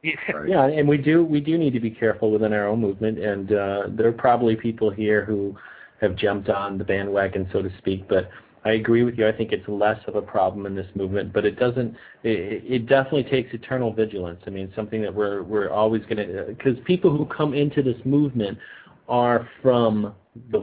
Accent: American